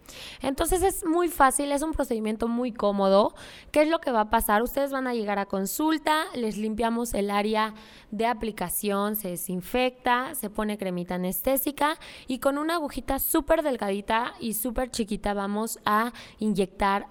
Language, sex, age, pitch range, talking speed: Spanish, female, 20-39, 200-265 Hz, 160 wpm